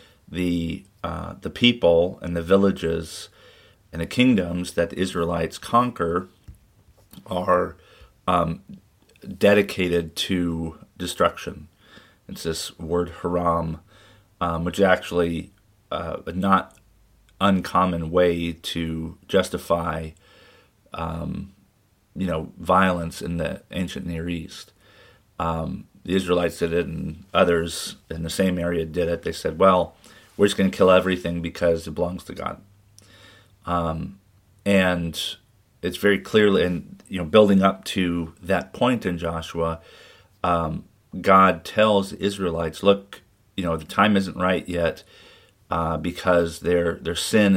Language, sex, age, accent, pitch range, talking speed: English, male, 30-49, American, 85-100 Hz, 130 wpm